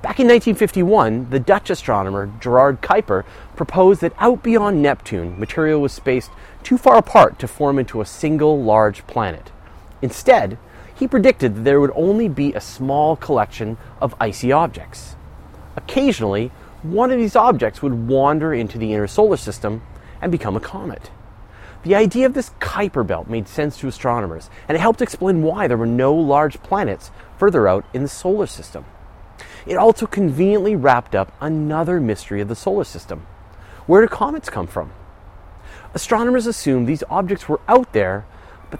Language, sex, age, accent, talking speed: English, male, 30-49, American, 165 wpm